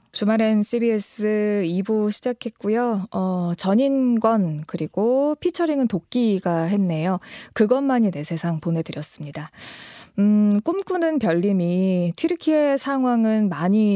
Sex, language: female, Korean